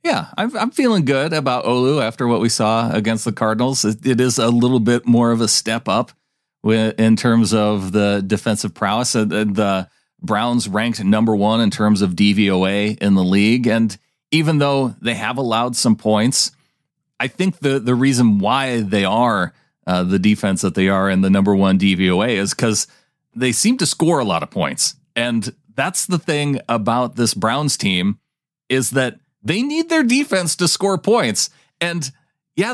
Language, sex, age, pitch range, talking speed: English, male, 40-59, 110-145 Hz, 180 wpm